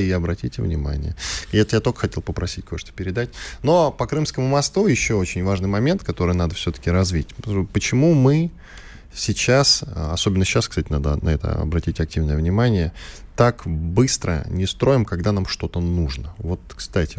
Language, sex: Russian, male